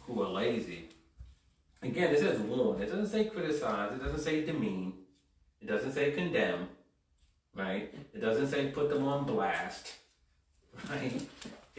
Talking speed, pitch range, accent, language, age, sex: 145 wpm, 90-145 Hz, American, English, 30-49, male